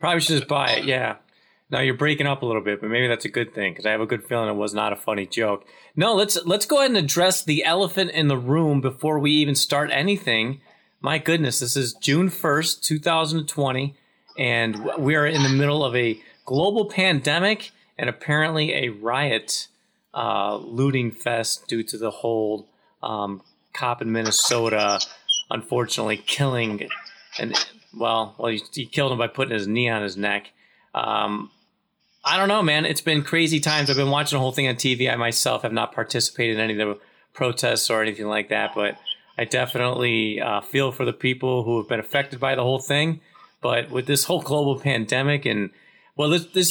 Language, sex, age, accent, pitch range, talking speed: English, male, 30-49, American, 115-150 Hz, 195 wpm